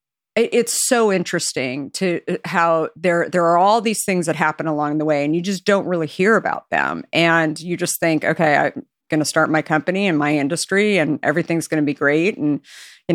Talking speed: 200 wpm